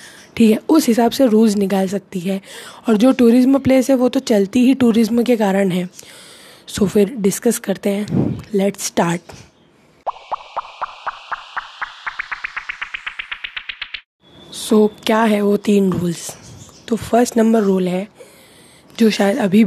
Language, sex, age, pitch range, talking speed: Hindi, female, 20-39, 200-225 Hz, 135 wpm